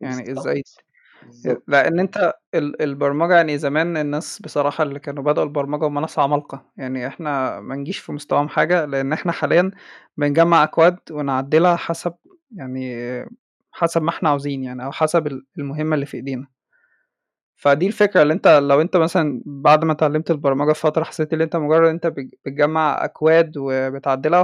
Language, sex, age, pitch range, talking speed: Arabic, male, 20-39, 140-165 Hz, 150 wpm